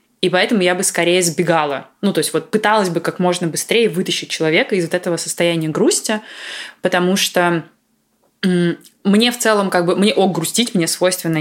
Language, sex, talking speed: Russian, female, 180 wpm